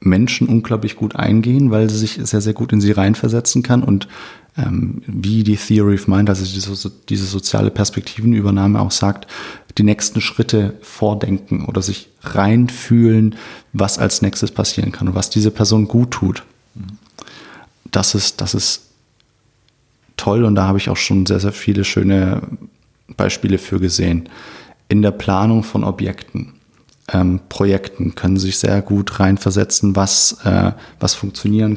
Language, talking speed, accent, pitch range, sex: German, 145 wpm, German, 100-115 Hz, male